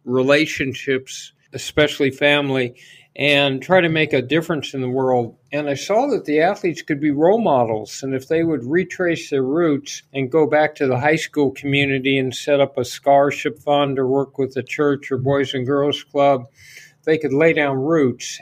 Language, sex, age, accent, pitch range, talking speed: English, male, 50-69, American, 130-145 Hz, 190 wpm